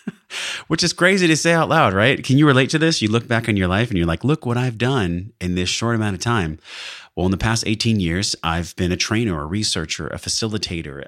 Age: 30-49